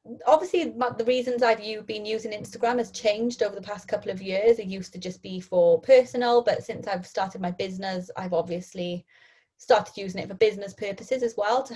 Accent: British